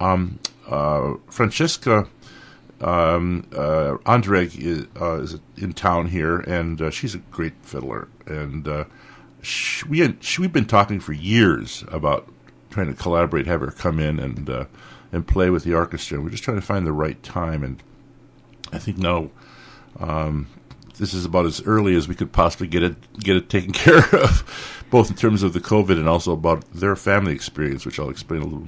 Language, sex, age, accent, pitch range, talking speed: English, male, 50-69, American, 80-105 Hz, 190 wpm